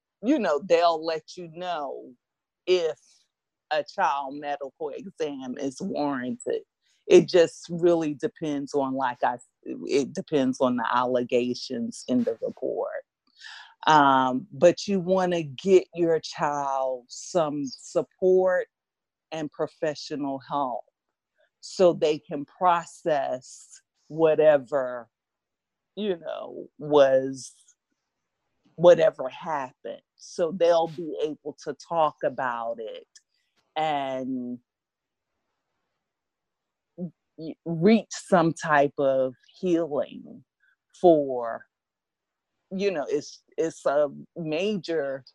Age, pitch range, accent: 40-59, 140-180 Hz, American